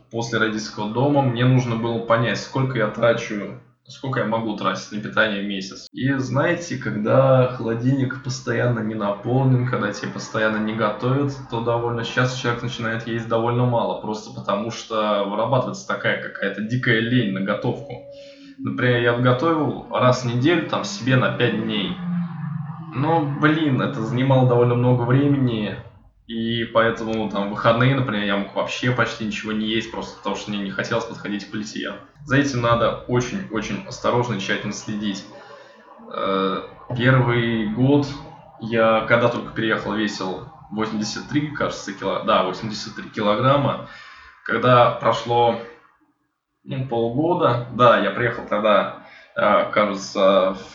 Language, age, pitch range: Russian, 20-39, 110-130 Hz